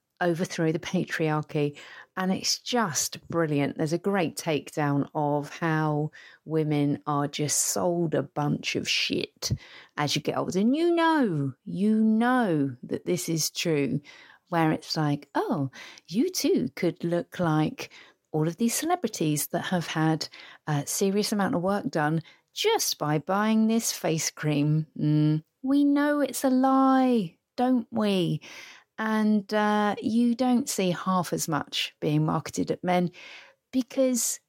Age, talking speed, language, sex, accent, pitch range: 40-59, 145 wpm, English, female, British, 150-215 Hz